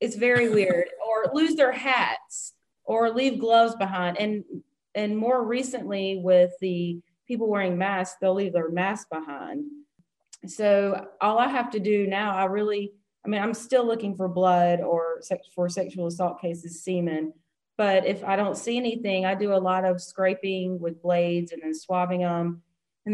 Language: English